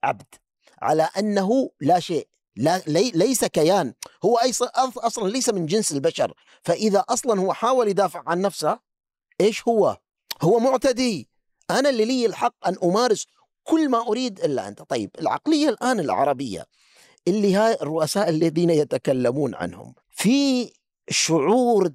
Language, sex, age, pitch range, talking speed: Arabic, male, 40-59, 165-245 Hz, 130 wpm